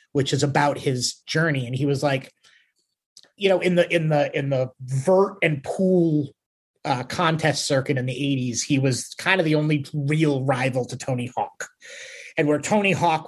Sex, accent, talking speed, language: male, American, 185 wpm, English